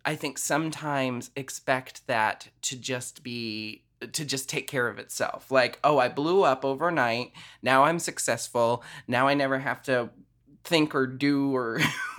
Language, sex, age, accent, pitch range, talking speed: English, male, 20-39, American, 130-155 Hz, 160 wpm